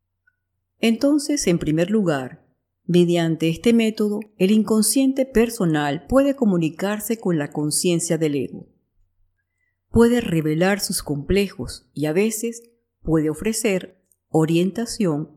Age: 50-69